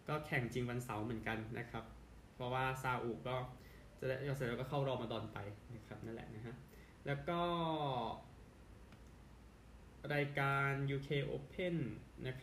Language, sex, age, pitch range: Thai, male, 20-39, 120-140 Hz